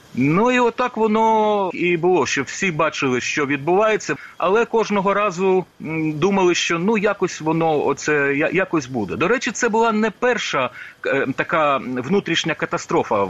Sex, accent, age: male, native, 40-59